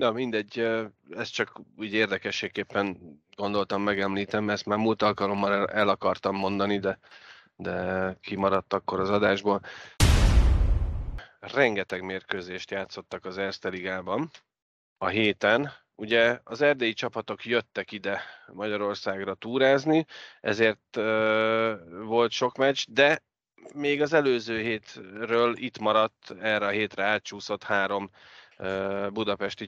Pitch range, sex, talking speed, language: 100-115 Hz, male, 110 wpm, Hungarian